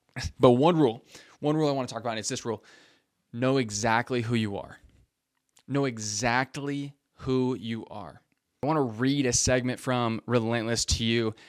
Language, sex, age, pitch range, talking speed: English, male, 20-39, 110-130 Hz, 170 wpm